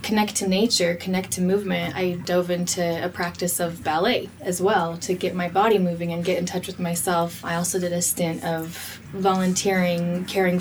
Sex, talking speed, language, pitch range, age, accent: female, 190 wpm, English, 175-195 Hz, 20-39, American